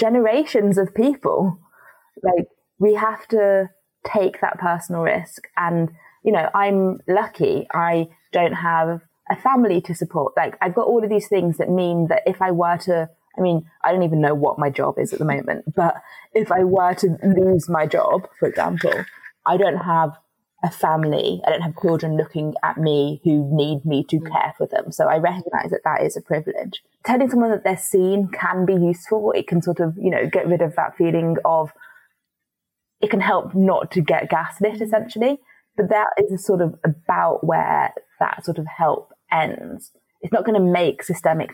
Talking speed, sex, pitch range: 195 wpm, female, 165-200 Hz